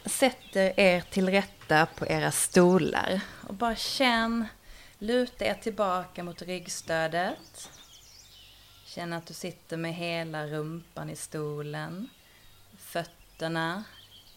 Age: 30-49